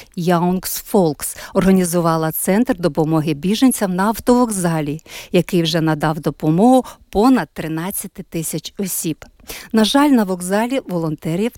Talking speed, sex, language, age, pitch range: 110 wpm, female, Ukrainian, 50-69, 170-240 Hz